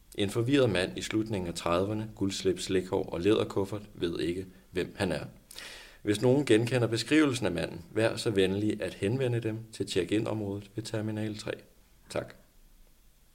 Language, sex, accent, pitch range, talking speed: Danish, male, native, 90-110 Hz, 150 wpm